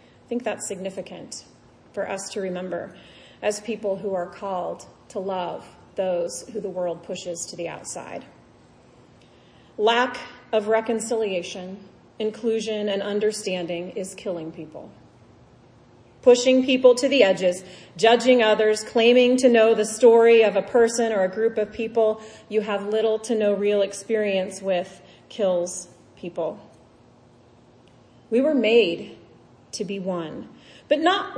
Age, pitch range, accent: 40-59, 200-255 Hz, American